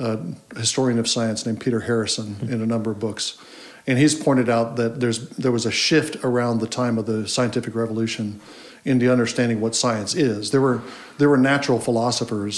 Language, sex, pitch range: English, male, 110-125 Hz